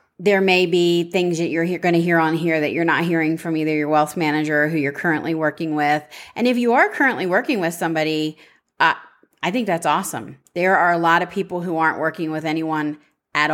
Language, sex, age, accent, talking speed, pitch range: English, female, 30-49, American, 225 wpm, 155-185 Hz